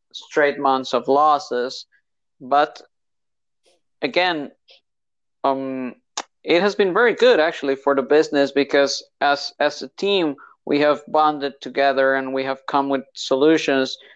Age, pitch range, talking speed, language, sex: 50-69, 135-155 Hz, 130 wpm, English, male